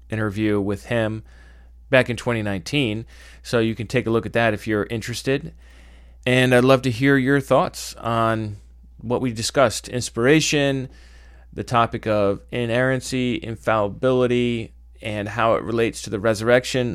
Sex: male